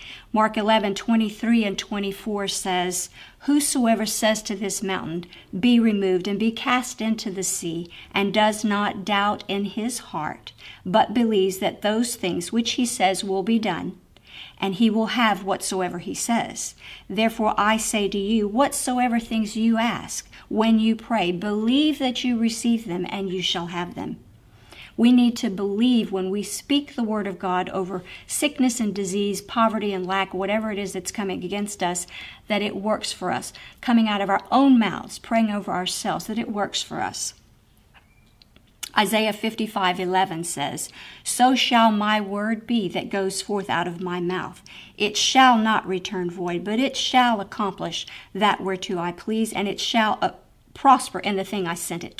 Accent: American